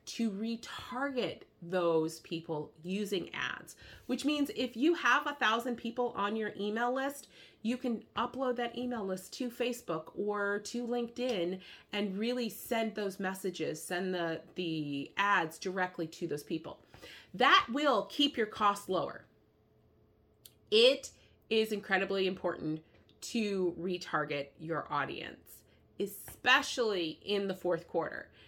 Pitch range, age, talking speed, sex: 165-240 Hz, 30-49, 130 wpm, female